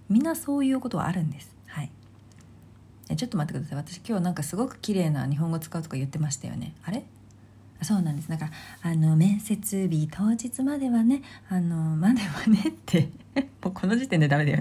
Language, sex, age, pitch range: Japanese, female, 40-59, 150-225 Hz